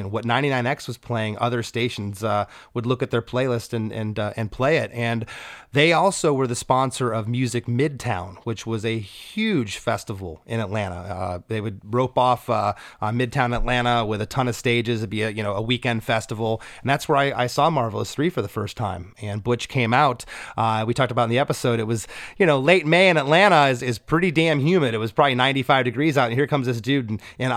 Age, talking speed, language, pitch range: 30-49, 230 wpm, English, 110-135 Hz